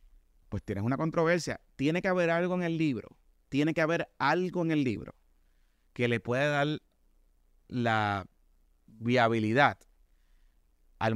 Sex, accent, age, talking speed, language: male, Venezuelan, 30-49, 135 wpm, Spanish